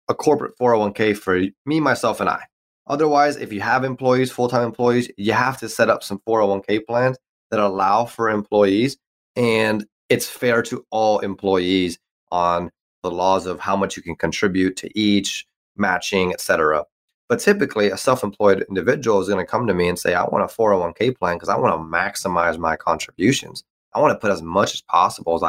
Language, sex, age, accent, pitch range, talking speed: English, male, 20-39, American, 90-120 Hz, 190 wpm